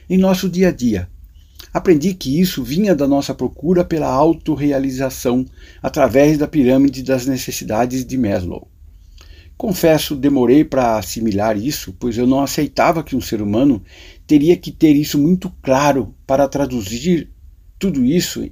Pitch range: 95-145 Hz